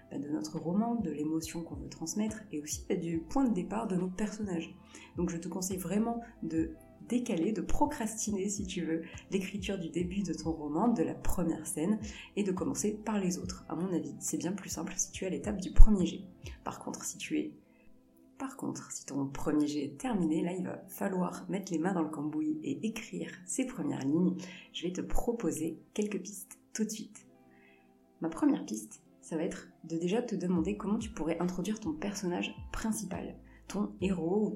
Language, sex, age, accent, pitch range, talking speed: French, female, 30-49, French, 160-210 Hz, 205 wpm